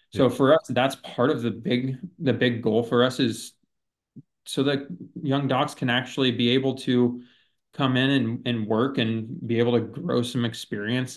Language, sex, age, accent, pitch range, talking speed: English, male, 20-39, American, 110-125 Hz, 190 wpm